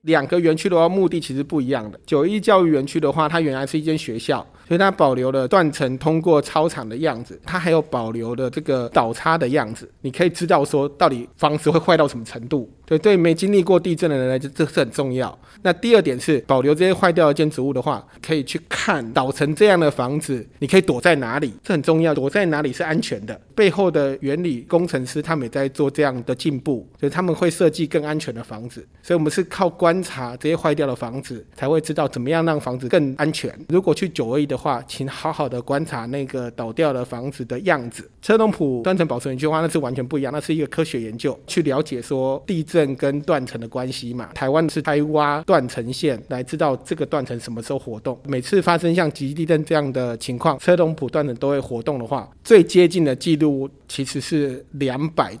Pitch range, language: 130-165 Hz, Chinese